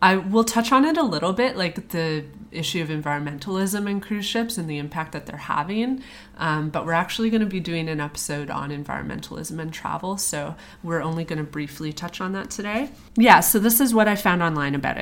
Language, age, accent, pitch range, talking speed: English, 30-49, American, 150-190 Hz, 220 wpm